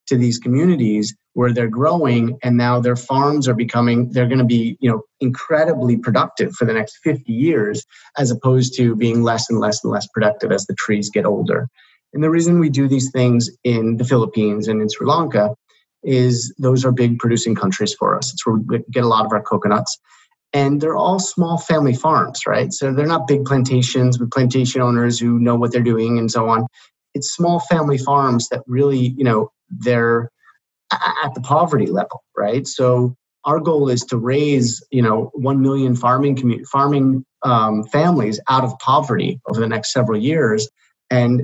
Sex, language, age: male, English, 30-49